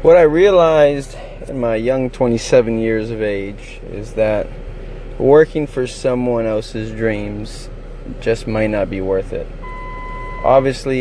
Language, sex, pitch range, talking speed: English, male, 110-130 Hz, 130 wpm